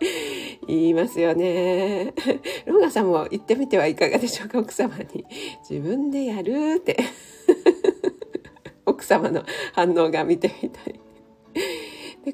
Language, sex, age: Japanese, female, 40-59